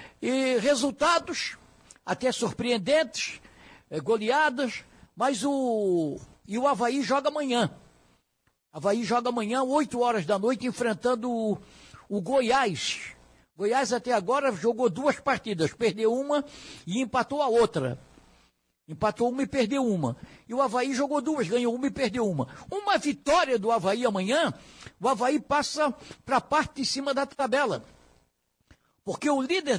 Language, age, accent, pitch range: Portuguese, 60-79, Brazilian, 215-275 Hz